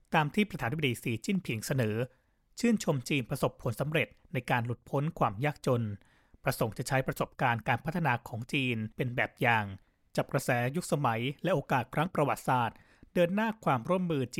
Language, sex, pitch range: Thai, male, 120-155 Hz